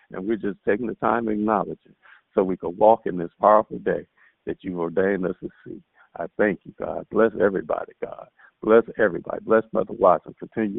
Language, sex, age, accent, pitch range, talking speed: English, male, 50-69, American, 110-140 Hz, 200 wpm